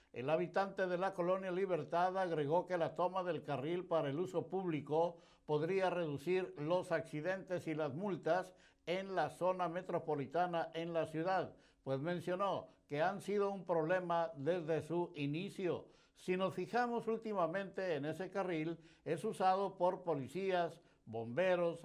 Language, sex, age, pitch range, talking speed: Spanish, male, 60-79, 160-195 Hz, 145 wpm